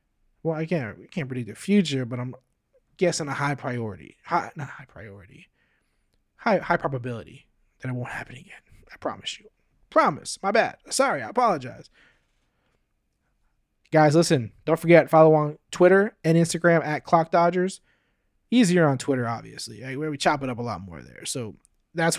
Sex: male